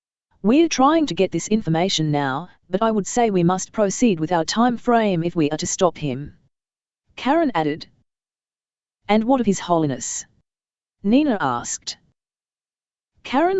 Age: 30-49